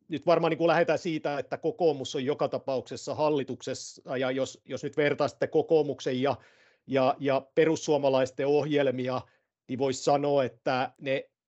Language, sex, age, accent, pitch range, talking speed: Finnish, male, 50-69, native, 130-155 Hz, 140 wpm